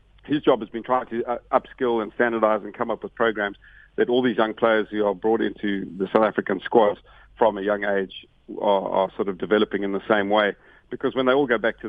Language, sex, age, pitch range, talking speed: English, male, 50-69, 100-115 Hz, 235 wpm